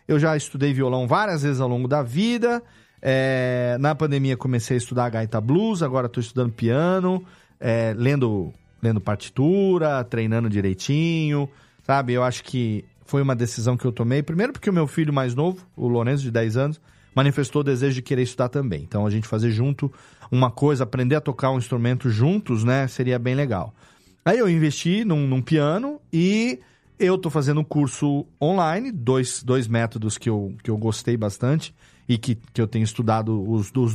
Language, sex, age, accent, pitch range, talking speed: Portuguese, male, 40-59, Brazilian, 120-150 Hz, 185 wpm